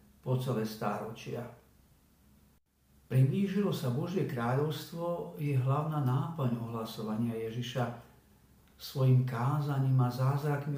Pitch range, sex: 120-155 Hz, male